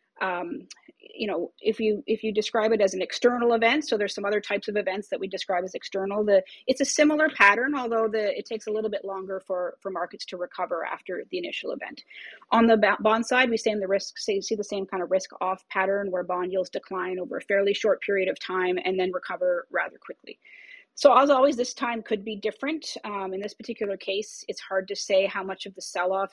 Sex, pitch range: female, 190-230 Hz